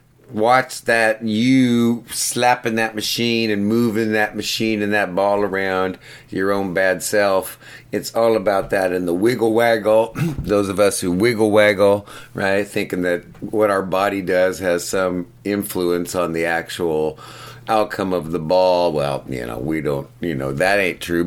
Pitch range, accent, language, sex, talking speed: 95-120 Hz, American, English, male, 165 wpm